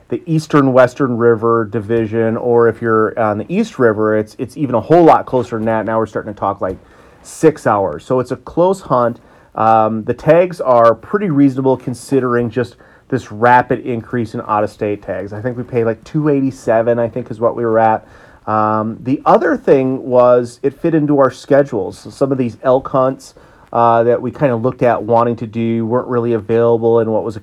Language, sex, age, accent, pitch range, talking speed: English, male, 30-49, American, 110-130 Hz, 210 wpm